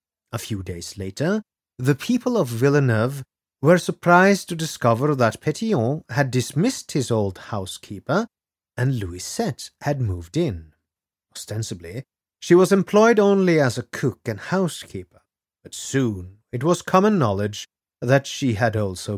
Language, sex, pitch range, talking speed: English, male, 100-140 Hz, 140 wpm